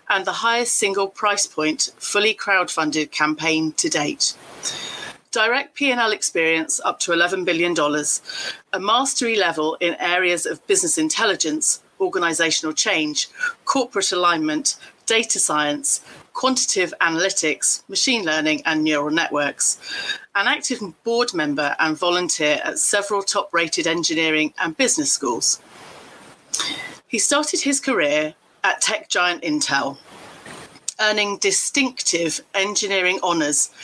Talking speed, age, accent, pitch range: 115 wpm, 40-59, British, 160-225 Hz